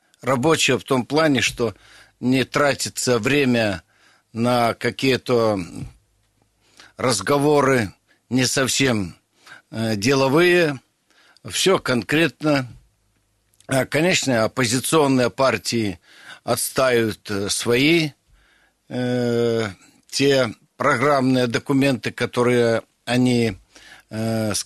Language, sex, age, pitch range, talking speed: Russian, male, 60-79, 115-140 Hz, 65 wpm